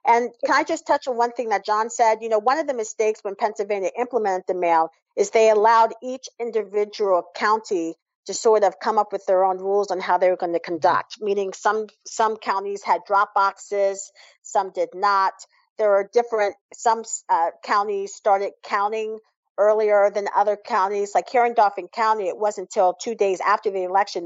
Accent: American